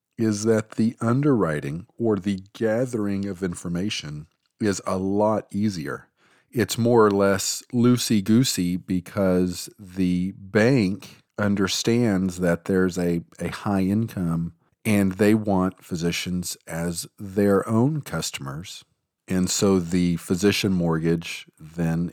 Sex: male